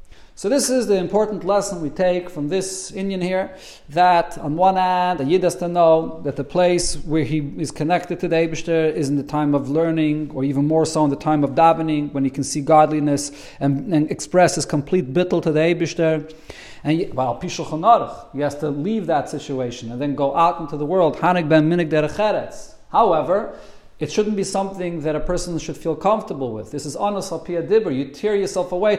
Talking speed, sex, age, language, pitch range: 200 wpm, male, 40-59, English, 155-190 Hz